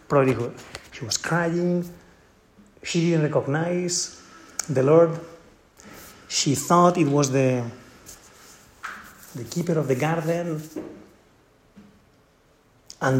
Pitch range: 130-165 Hz